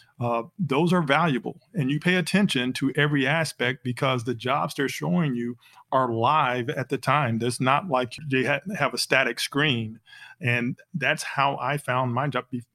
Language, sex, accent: English, male, American